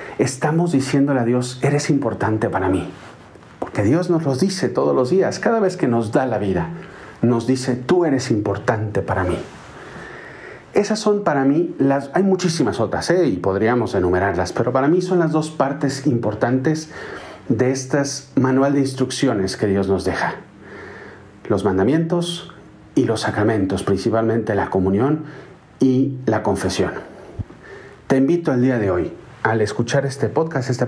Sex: male